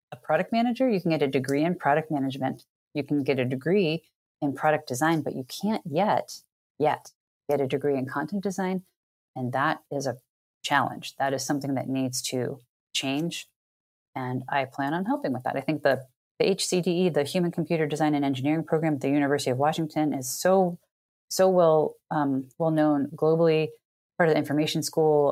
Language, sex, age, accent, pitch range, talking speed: English, female, 30-49, American, 135-165 Hz, 185 wpm